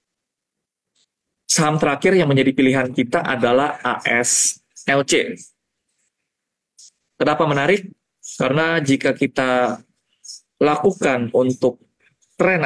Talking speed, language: 80 wpm, Indonesian